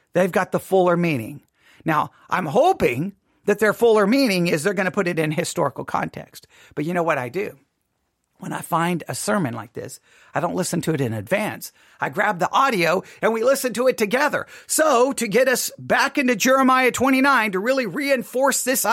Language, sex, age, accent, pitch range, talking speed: English, male, 40-59, American, 175-260 Hz, 200 wpm